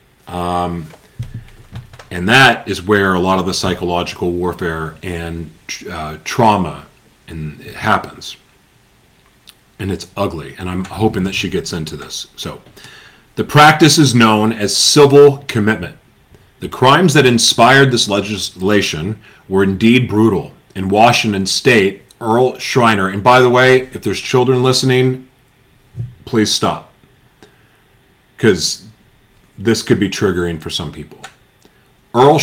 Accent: American